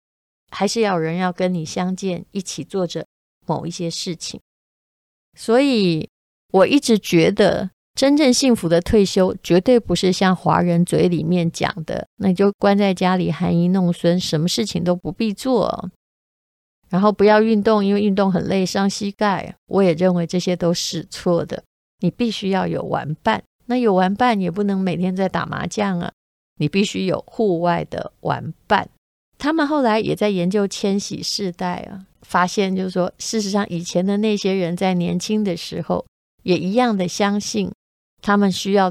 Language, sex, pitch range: Chinese, female, 175-205 Hz